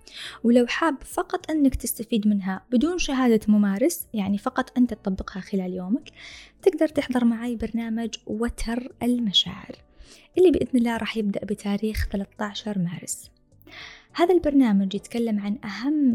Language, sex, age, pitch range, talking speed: Arabic, female, 20-39, 205-250 Hz, 125 wpm